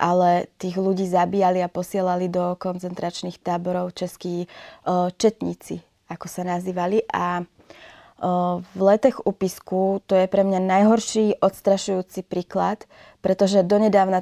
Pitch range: 180-200 Hz